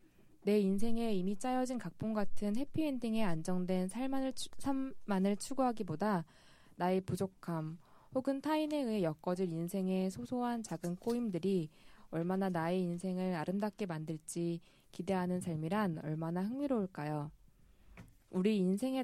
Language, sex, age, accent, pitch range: Korean, female, 20-39, native, 165-215 Hz